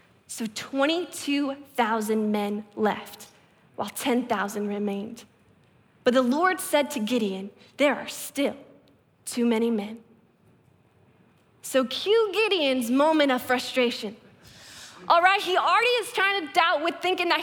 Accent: American